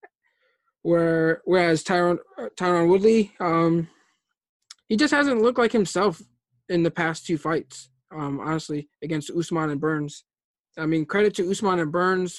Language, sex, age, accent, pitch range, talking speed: English, male, 20-39, American, 155-180 Hz, 145 wpm